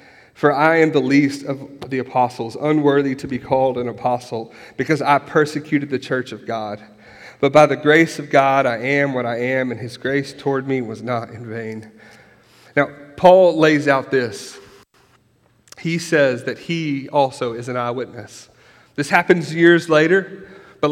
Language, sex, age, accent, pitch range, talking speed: English, male, 40-59, American, 130-165 Hz, 170 wpm